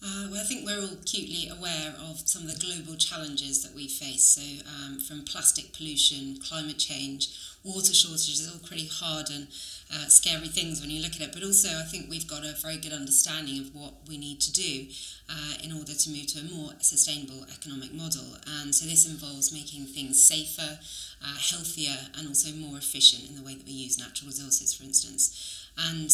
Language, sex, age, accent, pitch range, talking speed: English, female, 30-49, British, 135-155 Hz, 205 wpm